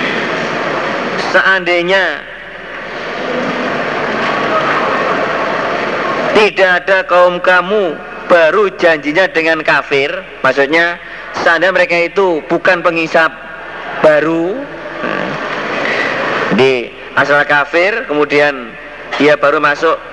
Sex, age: male, 40-59